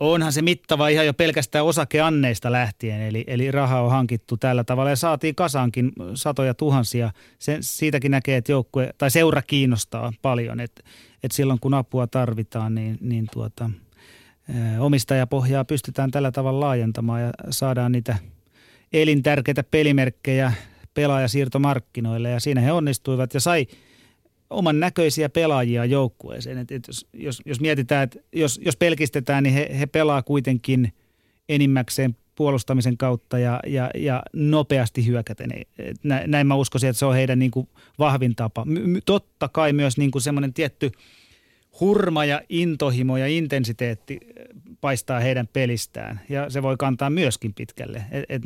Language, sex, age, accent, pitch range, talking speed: Finnish, male, 30-49, native, 120-145 Hz, 135 wpm